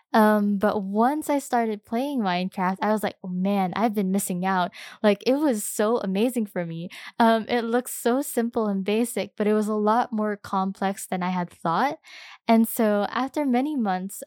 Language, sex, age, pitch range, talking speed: English, female, 10-29, 190-230 Hz, 195 wpm